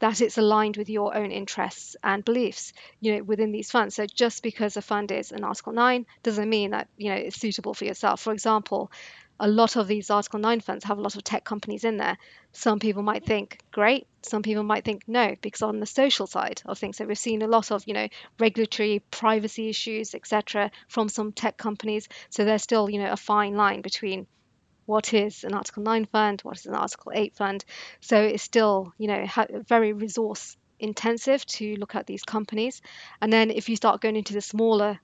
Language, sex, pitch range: English, female, 210-225 Hz